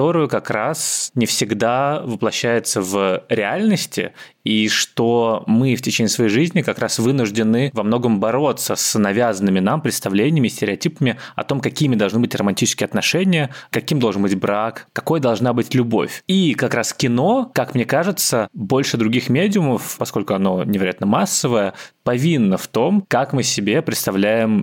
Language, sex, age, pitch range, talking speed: Russian, male, 20-39, 105-130 Hz, 150 wpm